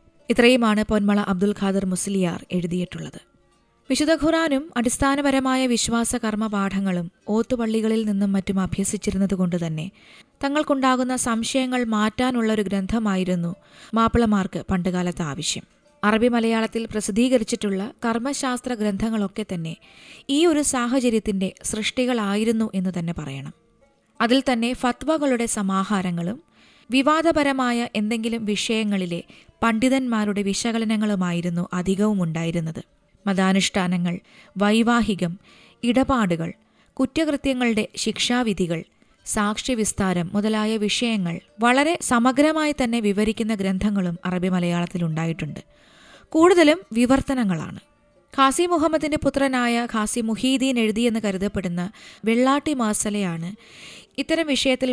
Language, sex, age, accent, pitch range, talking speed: Malayalam, female, 20-39, native, 195-250 Hz, 85 wpm